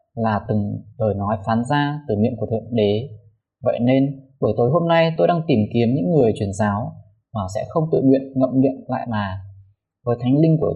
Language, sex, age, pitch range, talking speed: Vietnamese, male, 20-39, 110-150 Hz, 210 wpm